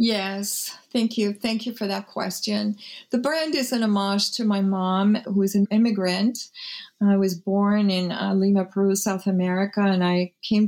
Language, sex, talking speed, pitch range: English, female, 175 wpm, 200-230 Hz